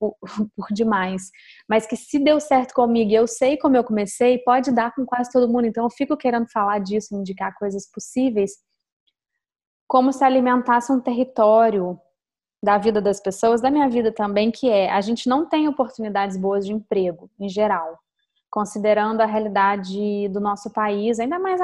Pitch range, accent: 210-265 Hz, Brazilian